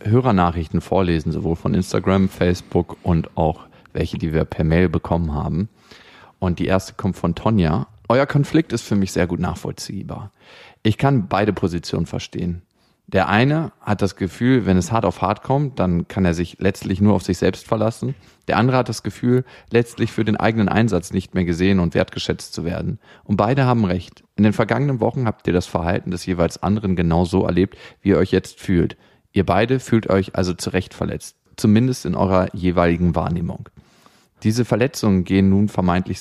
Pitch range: 90-115 Hz